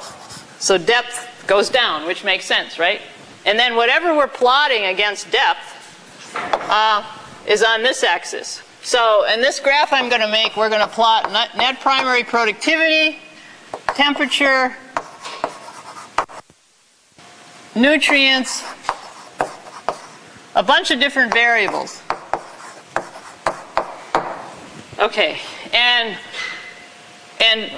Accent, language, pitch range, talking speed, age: American, English, 205-260 Hz, 95 wpm, 50-69